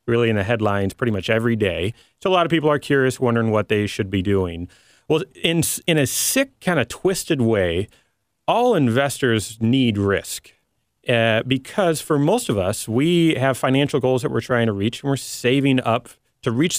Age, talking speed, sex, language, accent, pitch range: 30-49, 195 wpm, male, English, American, 110-140 Hz